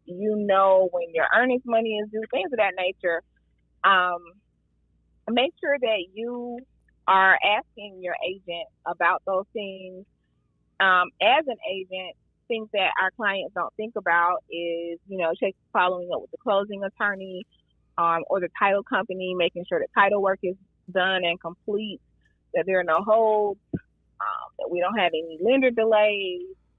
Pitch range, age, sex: 175-220 Hz, 30-49, female